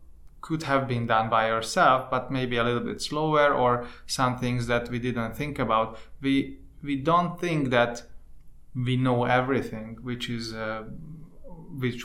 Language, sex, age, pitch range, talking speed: English, male, 30-49, 120-135 Hz, 160 wpm